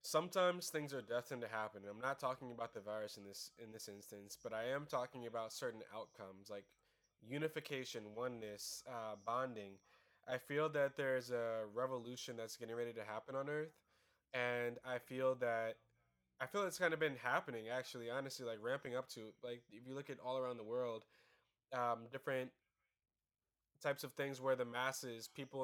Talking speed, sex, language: 180 wpm, male, English